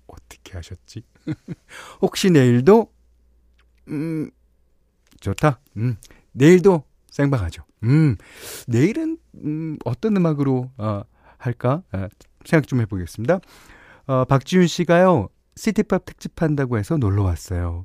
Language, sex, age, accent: Korean, male, 40-59, native